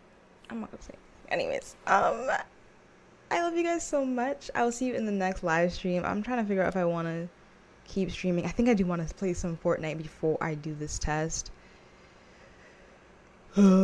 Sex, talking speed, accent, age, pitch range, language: female, 200 wpm, American, 10-29, 170-235 Hz, English